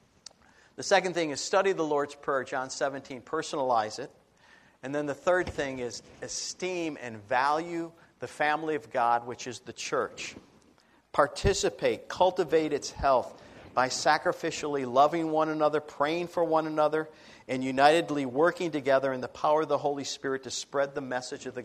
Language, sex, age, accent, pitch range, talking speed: English, male, 50-69, American, 125-160 Hz, 165 wpm